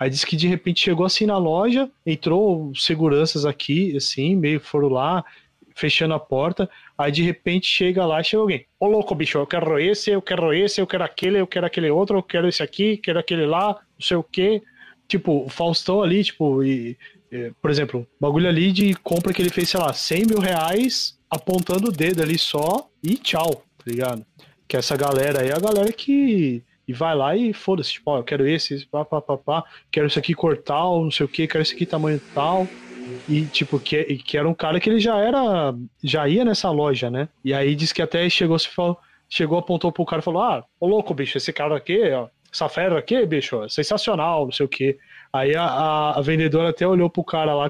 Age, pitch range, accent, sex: 20-39, 145-185 Hz, Brazilian, male